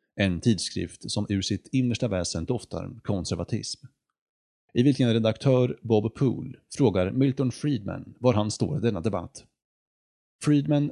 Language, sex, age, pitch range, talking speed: Swedish, male, 30-49, 95-130 Hz, 130 wpm